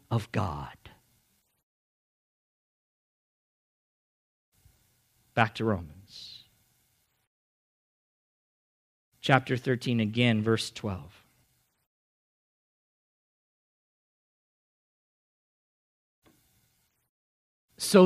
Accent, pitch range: American, 120-185 Hz